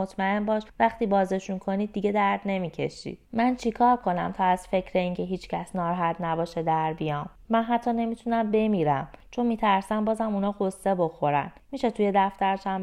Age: 20-39